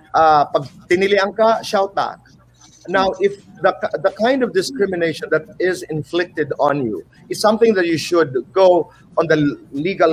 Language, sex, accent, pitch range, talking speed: Filipino, male, native, 160-210 Hz, 140 wpm